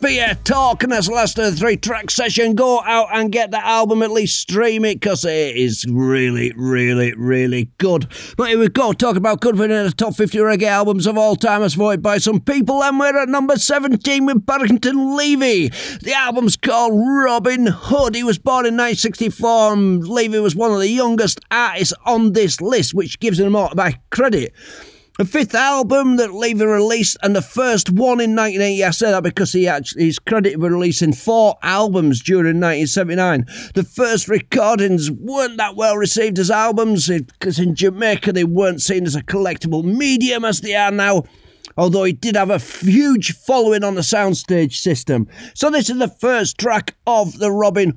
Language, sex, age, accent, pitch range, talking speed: English, male, 50-69, British, 180-235 Hz, 195 wpm